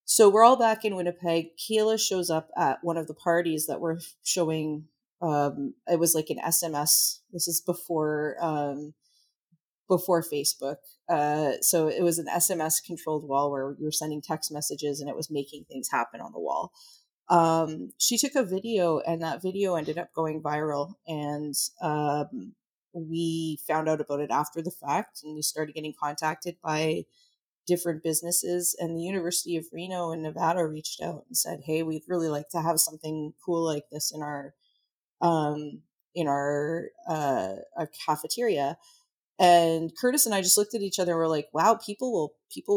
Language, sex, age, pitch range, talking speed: English, female, 30-49, 155-190 Hz, 180 wpm